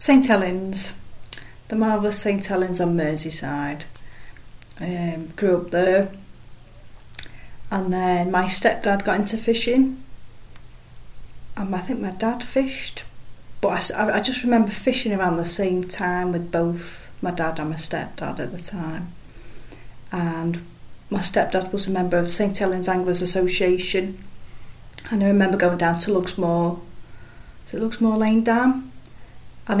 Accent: British